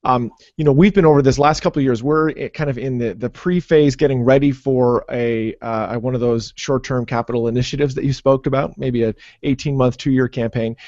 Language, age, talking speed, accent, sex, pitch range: English, 30-49, 235 wpm, American, male, 125-155 Hz